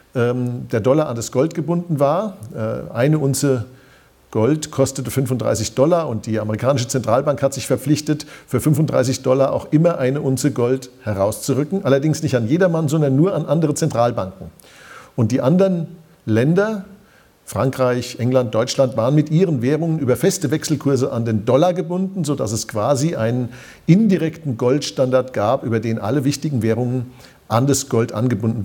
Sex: male